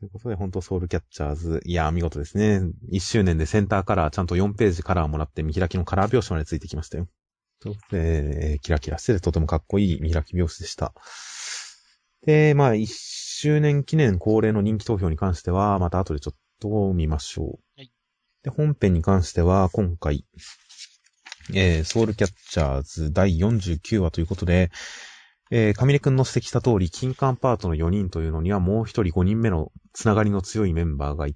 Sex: male